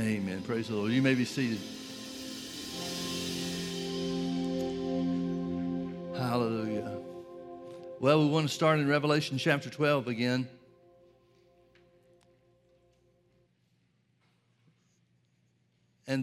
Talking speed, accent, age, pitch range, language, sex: 75 wpm, American, 60-79, 115-150 Hz, English, male